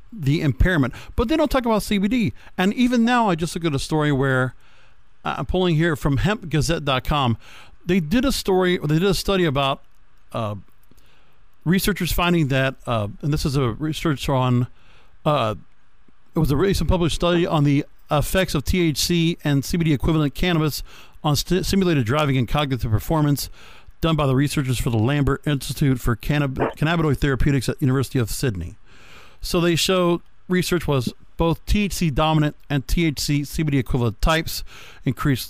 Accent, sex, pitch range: American, male, 130-170 Hz